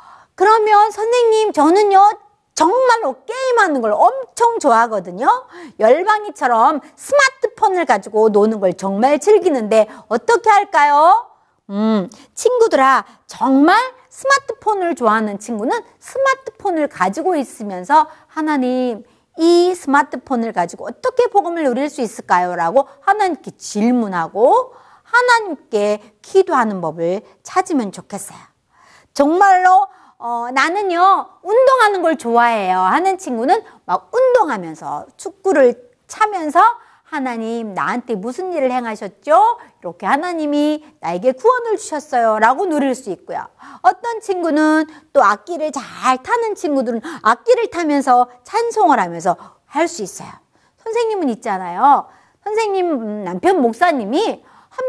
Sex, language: female, Korean